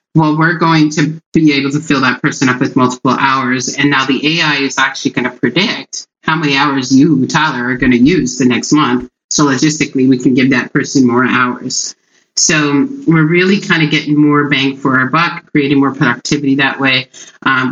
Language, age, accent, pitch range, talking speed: English, 30-49, American, 130-150 Hz, 205 wpm